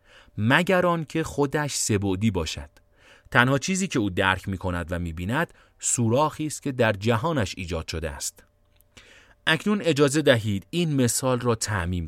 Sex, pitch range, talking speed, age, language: male, 95-130 Hz, 145 wpm, 30-49, Persian